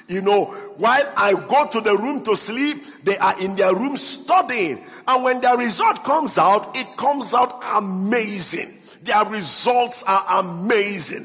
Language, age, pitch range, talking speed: English, 50-69, 195-260 Hz, 160 wpm